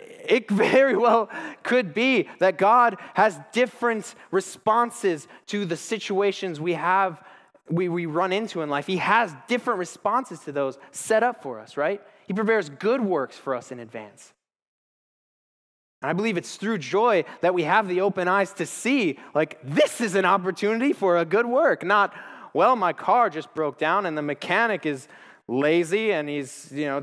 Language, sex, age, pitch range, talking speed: English, male, 20-39, 145-220 Hz, 175 wpm